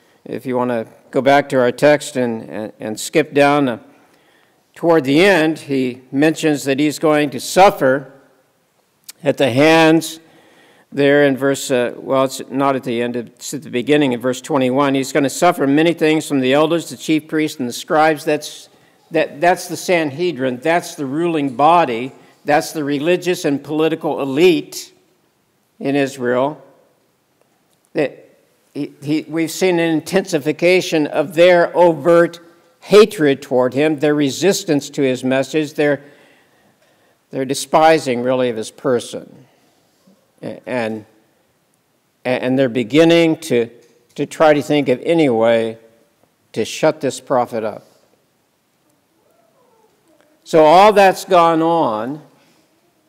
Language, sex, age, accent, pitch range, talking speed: English, male, 60-79, American, 130-165 Hz, 140 wpm